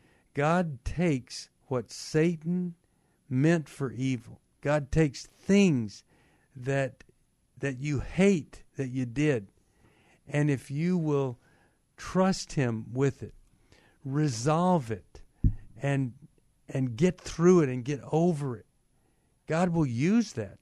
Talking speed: 115 wpm